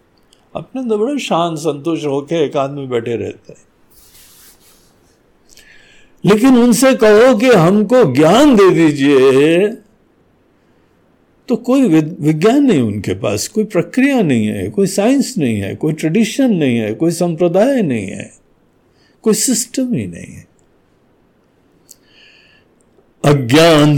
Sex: male